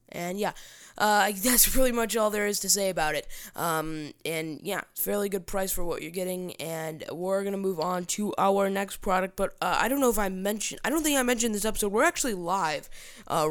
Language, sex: English, female